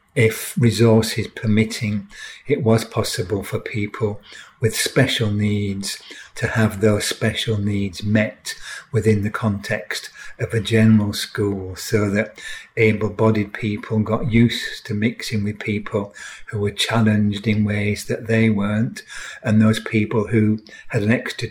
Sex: male